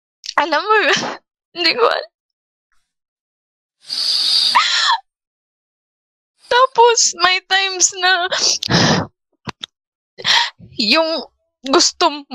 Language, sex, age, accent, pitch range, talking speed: Filipino, female, 20-39, native, 290-385 Hz, 55 wpm